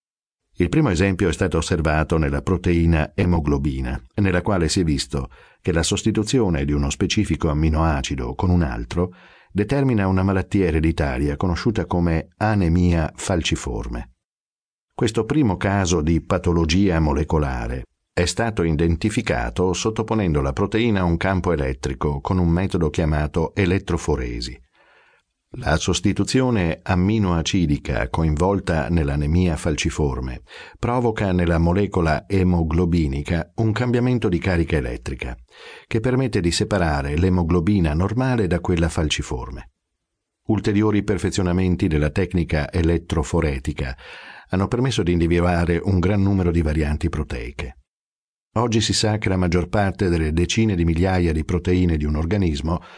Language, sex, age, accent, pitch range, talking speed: Italian, male, 50-69, native, 80-100 Hz, 120 wpm